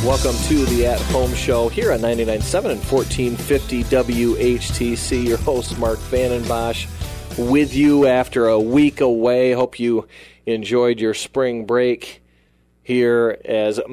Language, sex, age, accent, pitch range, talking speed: English, male, 40-59, American, 100-120 Hz, 125 wpm